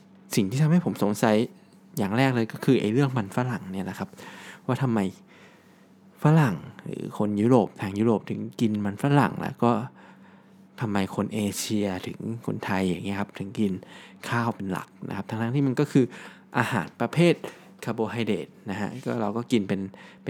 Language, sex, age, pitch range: Thai, male, 20-39, 105-145 Hz